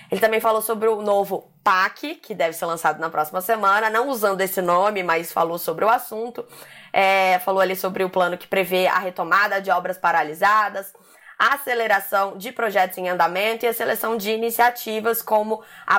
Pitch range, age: 190-240 Hz, 20-39